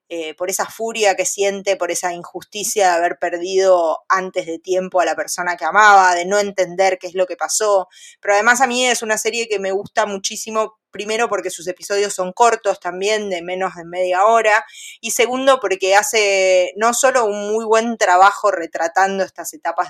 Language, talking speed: Spanish, 195 wpm